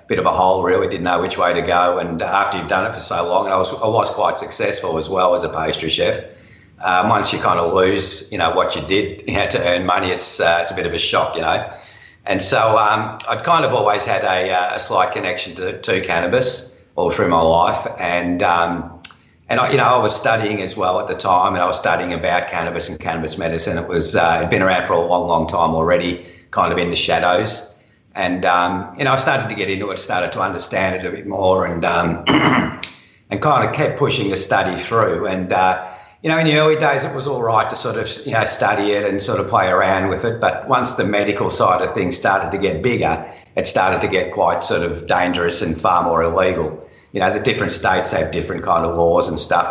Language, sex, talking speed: English, male, 250 wpm